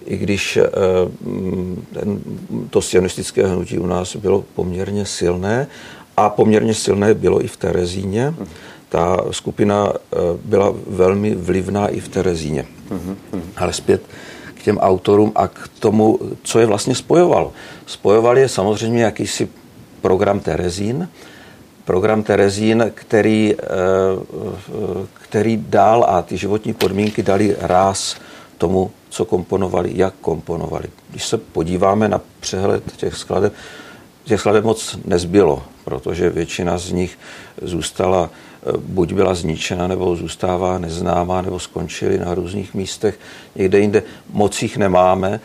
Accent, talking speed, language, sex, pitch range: native, 120 wpm, Czech, male, 90-105 Hz